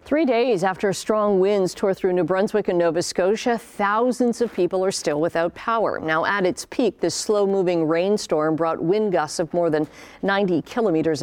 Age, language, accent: 50-69, English, American